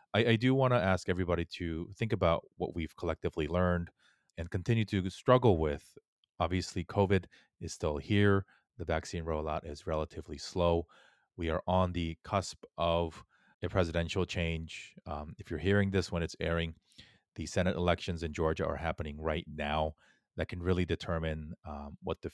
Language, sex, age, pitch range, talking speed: English, male, 30-49, 80-95 Hz, 170 wpm